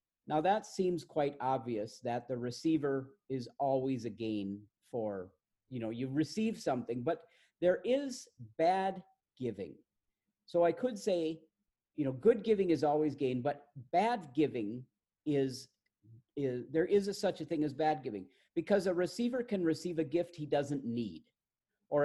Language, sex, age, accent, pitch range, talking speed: English, male, 50-69, American, 130-180 Hz, 160 wpm